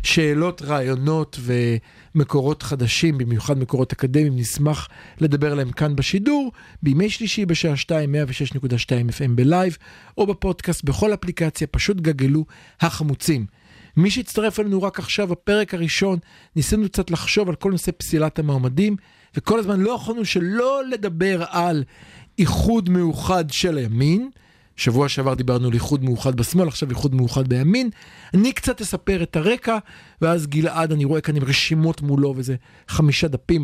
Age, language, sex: 40-59, Hebrew, male